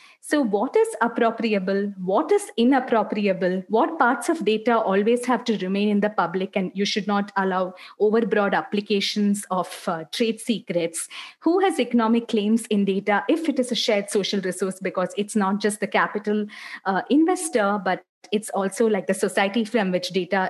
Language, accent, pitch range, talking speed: English, Indian, 190-235 Hz, 175 wpm